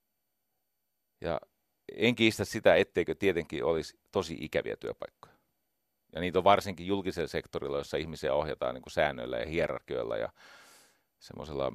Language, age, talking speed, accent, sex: Finnish, 40-59, 135 wpm, native, male